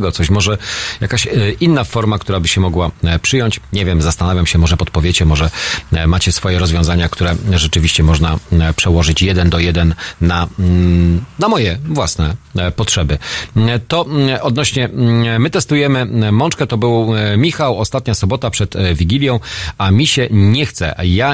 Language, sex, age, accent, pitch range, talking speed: Polish, male, 40-59, native, 85-115 Hz, 140 wpm